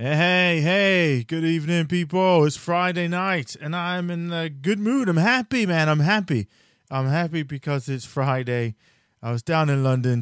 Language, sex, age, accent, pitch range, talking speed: English, male, 20-39, American, 120-160 Hz, 170 wpm